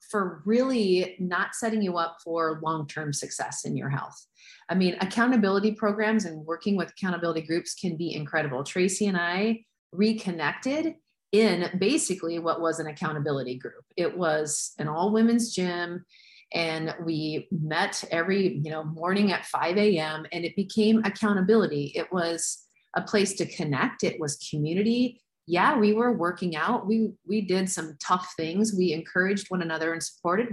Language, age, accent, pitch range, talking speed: English, 30-49, American, 165-210 Hz, 155 wpm